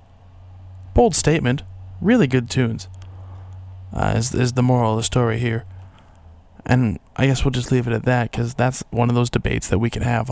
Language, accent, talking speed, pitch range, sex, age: English, American, 190 wpm, 115-135 Hz, male, 20-39